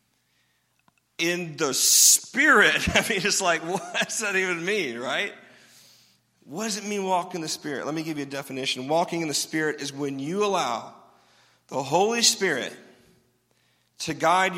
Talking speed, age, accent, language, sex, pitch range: 165 wpm, 40-59, American, English, male, 160-225 Hz